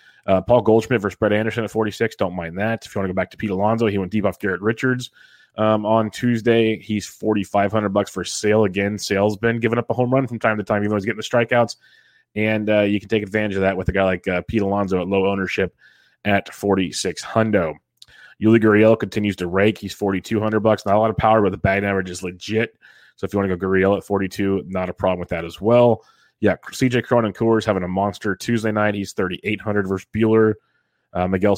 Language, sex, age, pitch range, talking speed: English, male, 20-39, 95-110 Hz, 250 wpm